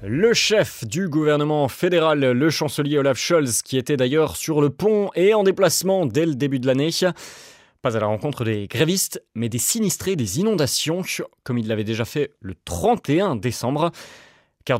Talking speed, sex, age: 175 wpm, male, 30-49